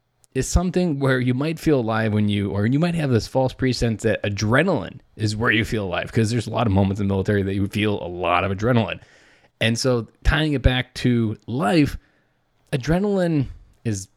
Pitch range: 105-130 Hz